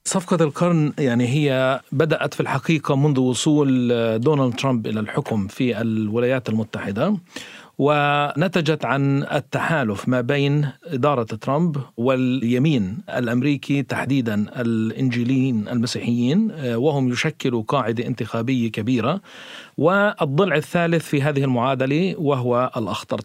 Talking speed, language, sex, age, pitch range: 105 wpm, Arabic, male, 40-59, 120-150 Hz